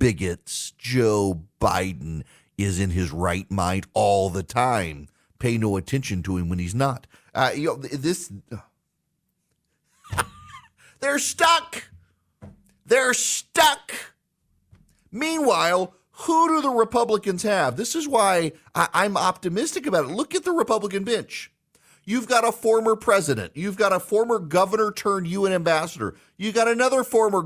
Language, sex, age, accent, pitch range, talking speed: English, male, 40-59, American, 160-230 Hz, 140 wpm